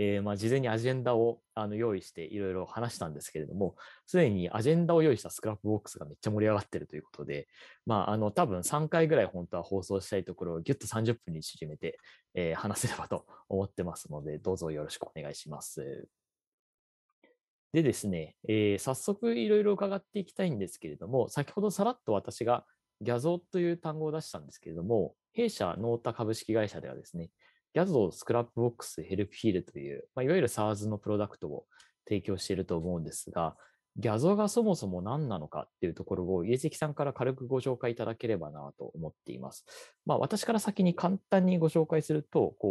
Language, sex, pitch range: Japanese, male, 100-160 Hz